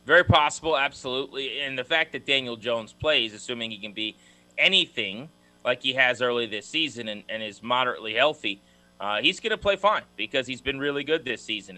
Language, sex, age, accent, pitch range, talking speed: English, male, 30-49, American, 110-150 Hz, 200 wpm